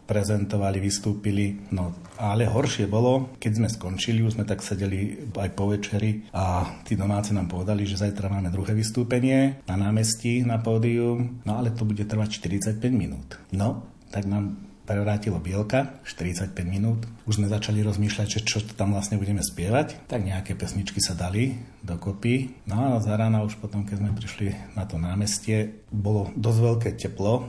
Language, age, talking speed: Slovak, 40-59, 165 wpm